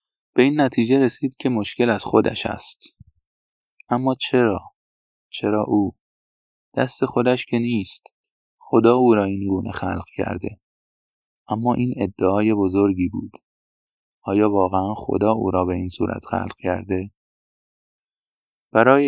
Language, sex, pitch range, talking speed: Persian, male, 95-120 Hz, 125 wpm